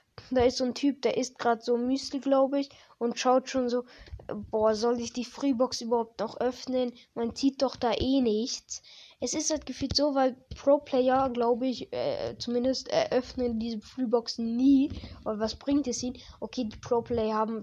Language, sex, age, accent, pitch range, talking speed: German, female, 10-29, German, 225-265 Hz, 195 wpm